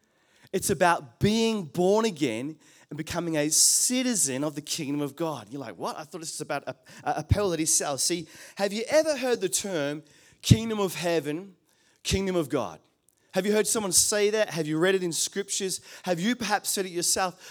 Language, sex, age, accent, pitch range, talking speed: English, male, 30-49, Australian, 165-215 Hz, 200 wpm